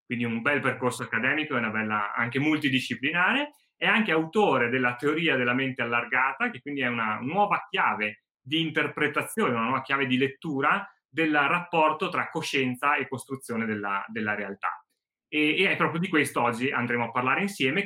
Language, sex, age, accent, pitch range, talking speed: Italian, male, 30-49, native, 120-155 Hz, 170 wpm